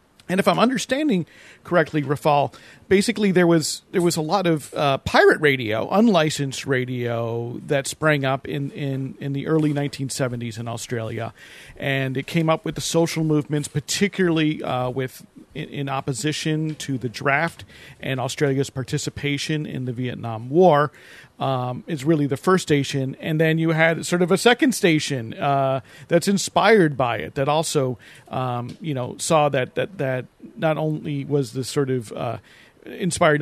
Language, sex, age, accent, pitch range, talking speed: English, male, 40-59, American, 130-160 Hz, 165 wpm